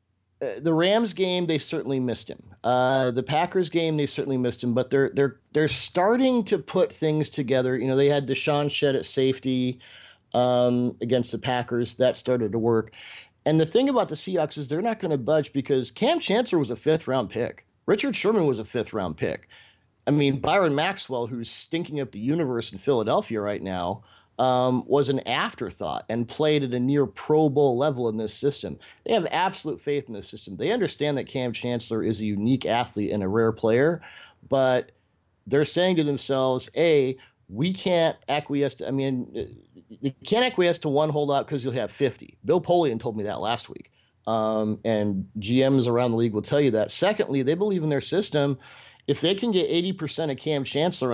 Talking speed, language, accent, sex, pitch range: 195 wpm, English, American, male, 120-150 Hz